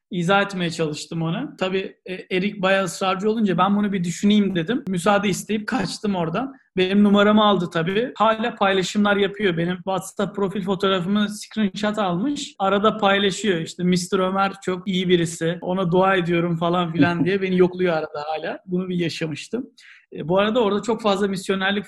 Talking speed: 160 wpm